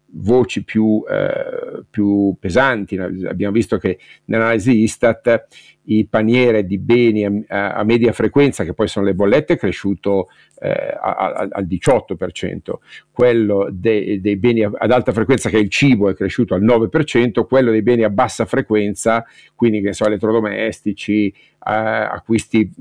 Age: 50-69